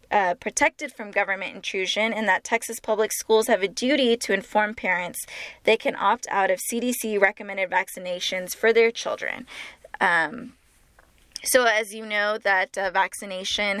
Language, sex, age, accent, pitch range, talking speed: English, female, 10-29, American, 195-230 Hz, 150 wpm